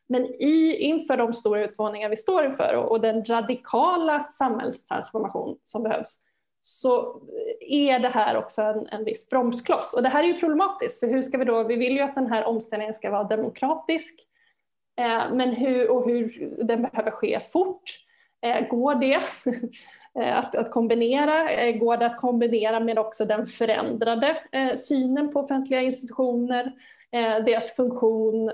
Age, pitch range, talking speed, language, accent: 20-39, 230-285 Hz, 145 wpm, Swedish, native